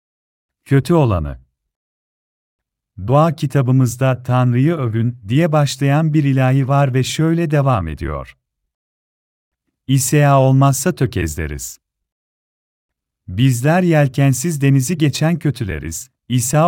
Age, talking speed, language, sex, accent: 40-59, 85 wpm, Turkish, male, native